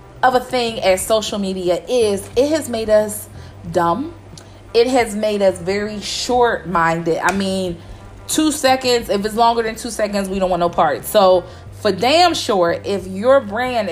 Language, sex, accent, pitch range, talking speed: English, female, American, 175-250 Hz, 170 wpm